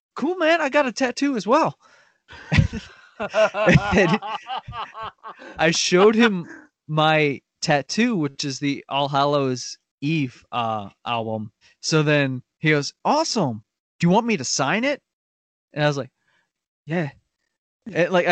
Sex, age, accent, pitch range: male, 20-39, American, 130-165 Hz